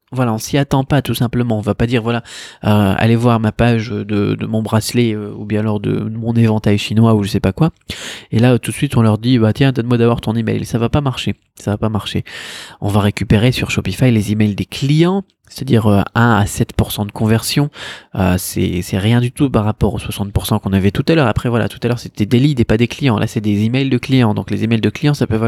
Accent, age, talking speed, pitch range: French, 20-39, 265 wpm, 105-125 Hz